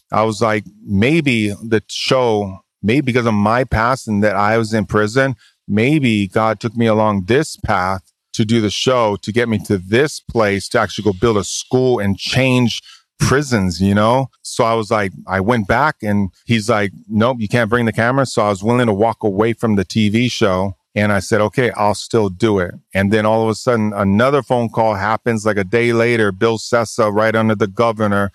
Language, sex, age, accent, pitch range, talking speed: English, male, 30-49, American, 105-125 Hz, 210 wpm